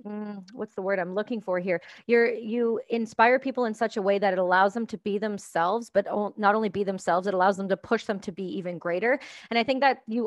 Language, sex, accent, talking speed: English, female, American, 250 wpm